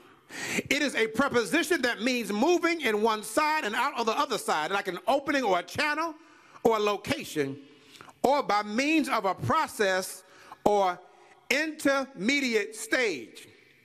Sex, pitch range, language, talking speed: male, 225-295 Hz, English, 145 wpm